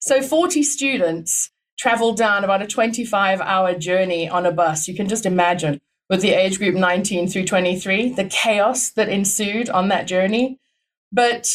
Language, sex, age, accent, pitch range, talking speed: English, female, 30-49, British, 185-245 Hz, 160 wpm